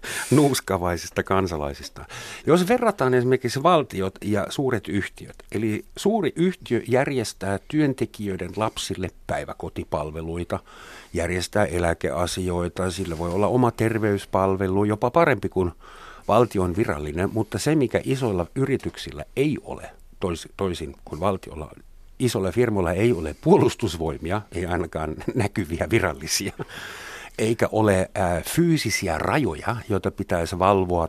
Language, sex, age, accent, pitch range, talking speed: Finnish, male, 50-69, native, 85-115 Hz, 110 wpm